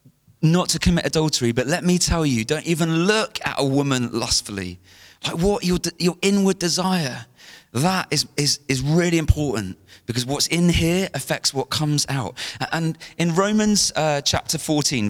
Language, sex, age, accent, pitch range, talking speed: English, male, 30-49, British, 125-180 Hz, 160 wpm